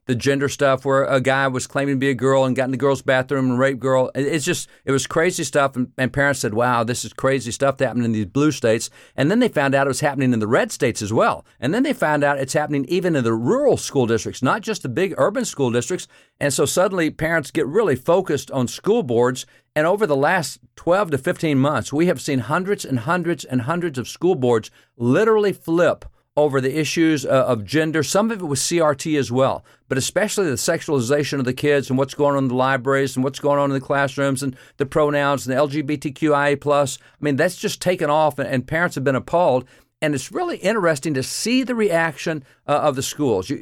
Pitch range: 130-155 Hz